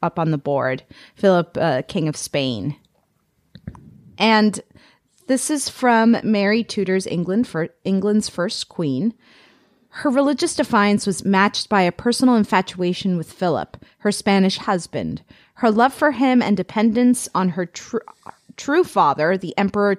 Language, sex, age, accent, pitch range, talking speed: English, female, 30-49, American, 175-220 Hz, 140 wpm